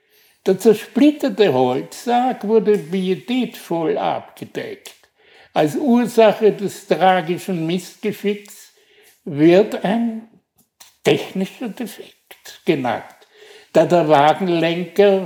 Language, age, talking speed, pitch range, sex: German, 60-79, 75 wpm, 175-220 Hz, male